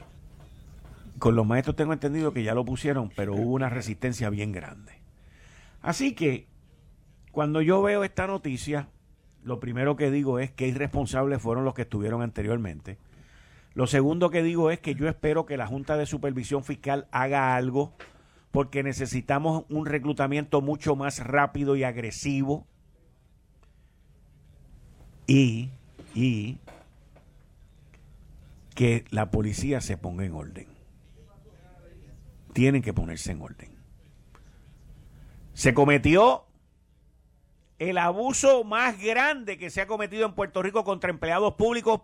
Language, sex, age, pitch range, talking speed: Spanish, male, 50-69, 115-170 Hz, 125 wpm